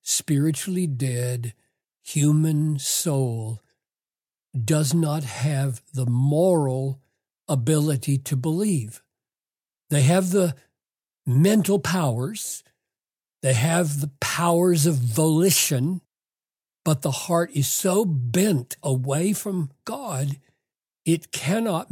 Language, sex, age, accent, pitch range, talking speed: English, male, 60-79, American, 140-185 Hz, 95 wpm